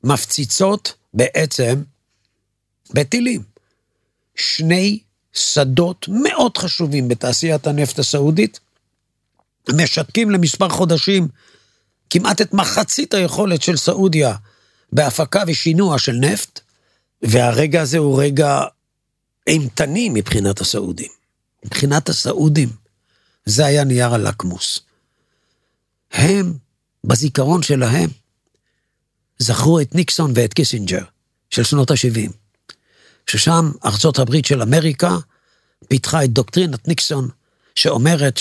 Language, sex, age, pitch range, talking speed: Hebrew, male, 50-69, 120-175 Hz, 90 wpm